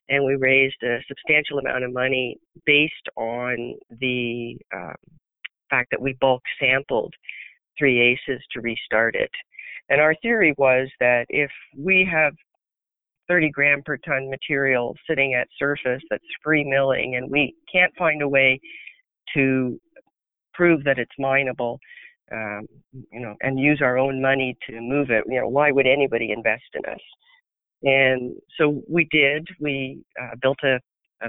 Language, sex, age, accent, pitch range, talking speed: English, female, 50-69, American, 125-145 Hz, 155 wpm